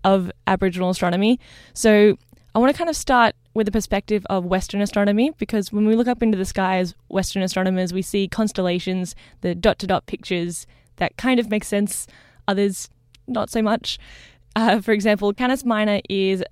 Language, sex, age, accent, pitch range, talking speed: English, female, 10-29, Australian, 180-210 Hz, 180 wpm